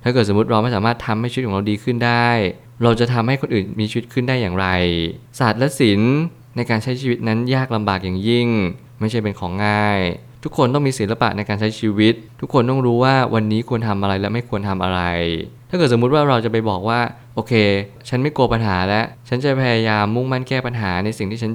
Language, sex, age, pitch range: Thai, male, 20-39, 105-125 Hz